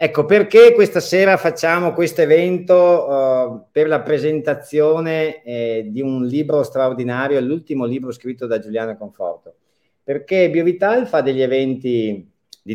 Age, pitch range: 50-69, 105-155 Hz